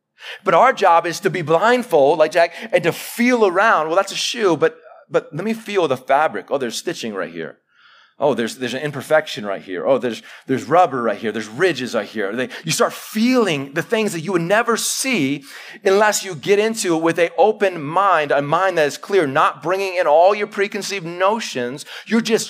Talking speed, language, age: 215 wpm, English, 30-49